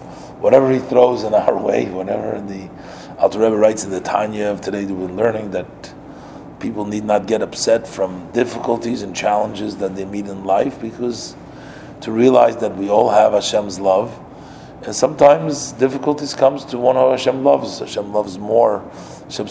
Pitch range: 100-130 Hz